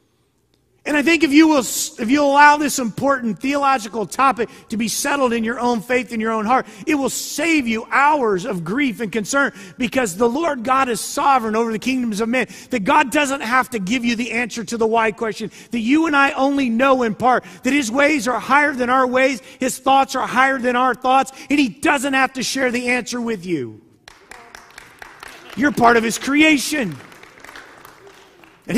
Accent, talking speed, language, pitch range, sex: American, 200 wpm, English, 210-270 Hz, male